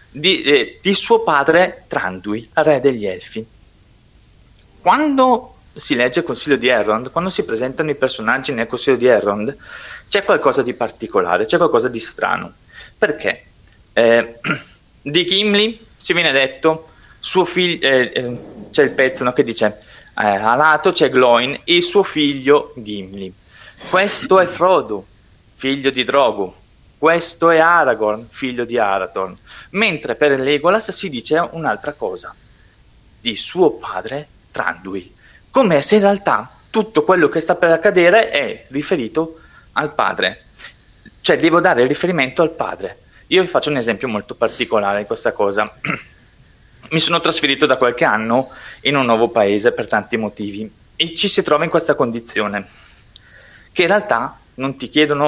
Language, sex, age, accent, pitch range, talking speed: Italian, male, 20-39, native, 115-175 Hz, 150 wpm